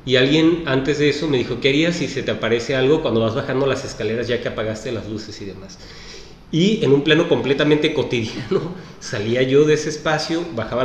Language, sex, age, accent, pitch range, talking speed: Spanish, male, 30-49, Mexican, 120-150 Hz, 210 wpm